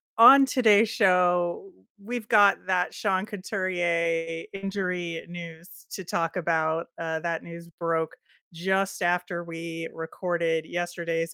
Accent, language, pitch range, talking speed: American, English, 170-215 Hz, 115 wpm